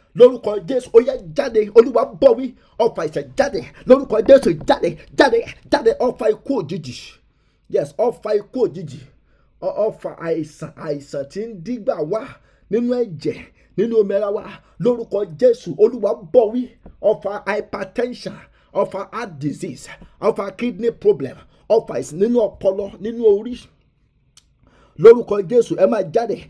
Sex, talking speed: male, 145 wpm